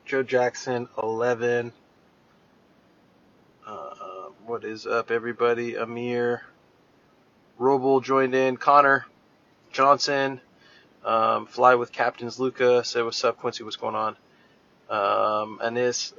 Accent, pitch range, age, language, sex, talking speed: American, 120-135 Hz, 20-39, English, male, 105 wpm